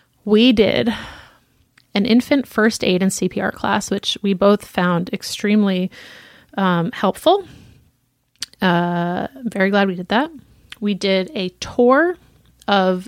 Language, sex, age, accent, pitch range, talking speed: English, female, 30-49, American, 185-220 Hz, 125 wpm